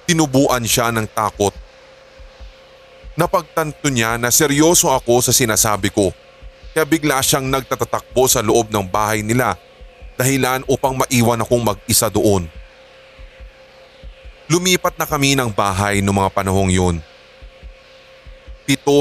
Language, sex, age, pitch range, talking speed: English, male, 20-39, 105-140 Hz, 115 wpm